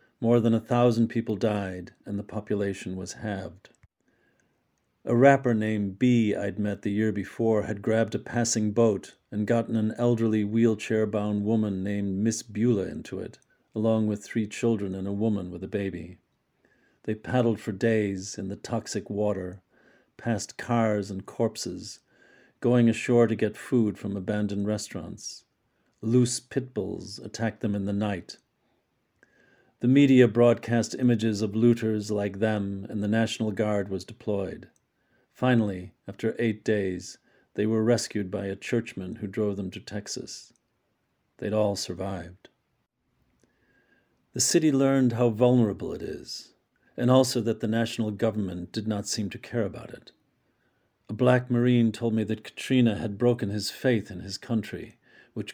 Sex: male